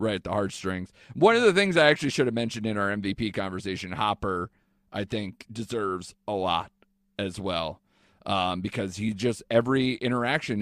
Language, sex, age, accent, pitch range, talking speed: English, male, 30-49, American, 95-120 Hz, 175 wpm